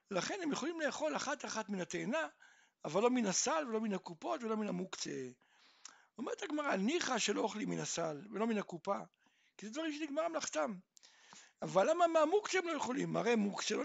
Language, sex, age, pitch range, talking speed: Hebrew, male, 60-79, 195-300 Hz, 185 wpm